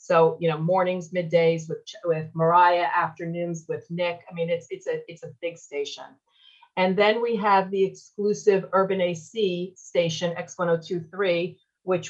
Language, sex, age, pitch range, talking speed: English, female, 40-59, 160-180 Hz, 155 wpm